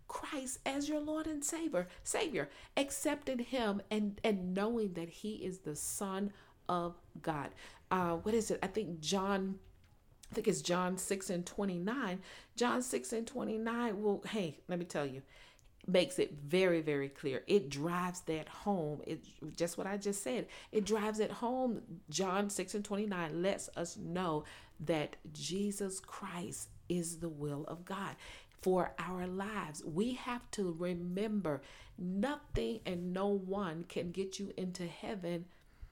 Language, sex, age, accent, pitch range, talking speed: English, female, 40-59, American, 175-220 Hz, 155 wpm